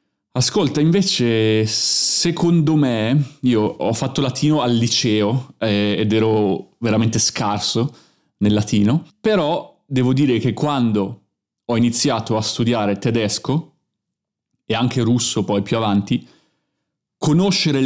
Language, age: Italian, 30-49